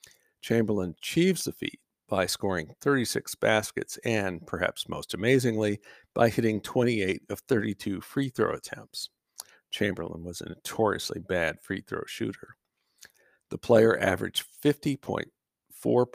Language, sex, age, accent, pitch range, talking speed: English, male, 50-69, American, 95-115 Hz, 110 wpm